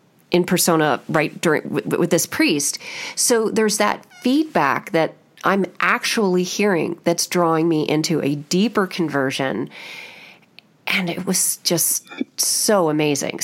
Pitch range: 155-210 Hz